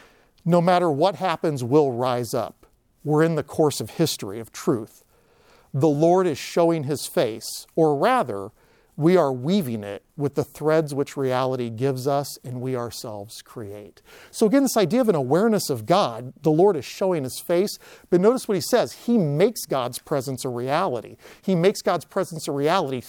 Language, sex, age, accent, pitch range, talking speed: English, male, 50-69, American, 120-165 Hz, 180 wpm